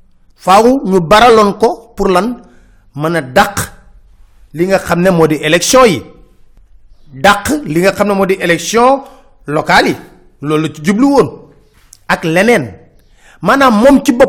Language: French